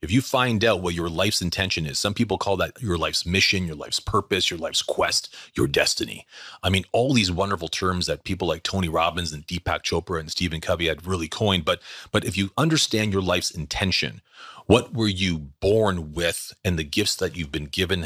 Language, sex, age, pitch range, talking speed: English, male, 30-49, 90-110 Hz, 215 wpm